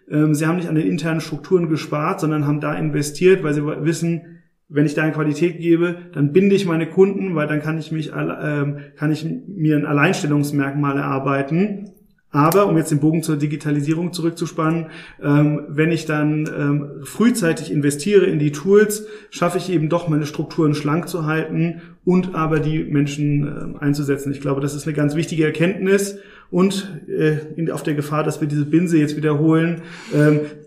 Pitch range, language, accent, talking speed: 150-170 Hz, German, German, 170 wpm